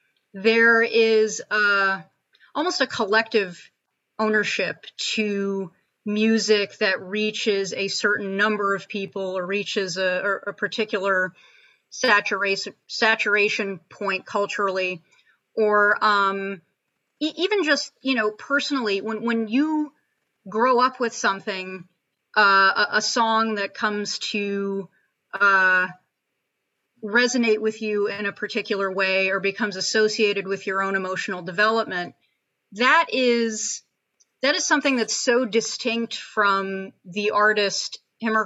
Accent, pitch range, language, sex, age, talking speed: American, 195-225 Hz, English, female, 30-49, 120 wpm